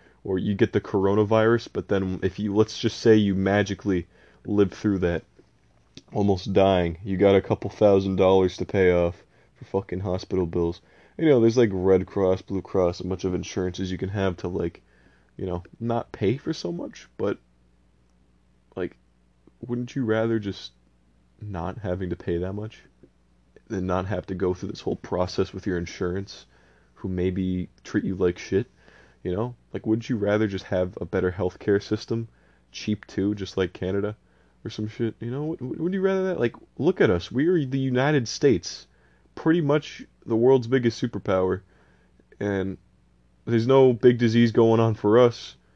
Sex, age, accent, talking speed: male, 20-39, American, 180 wpm